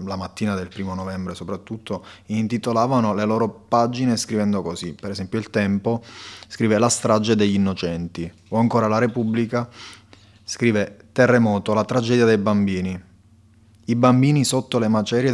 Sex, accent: male, native